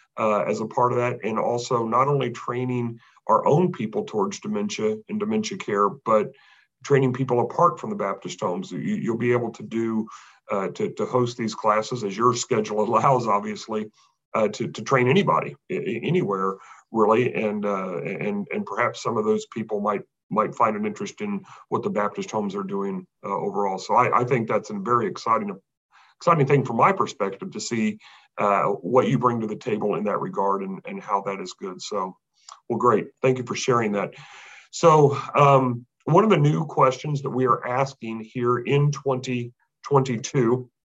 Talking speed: 190 wpm